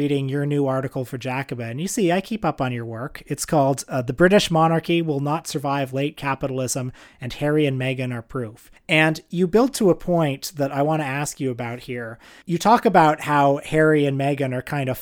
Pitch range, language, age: 130-155 Hz, English, 30-49